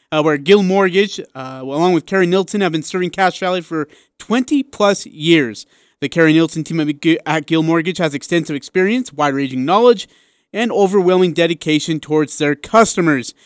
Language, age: English, 30-49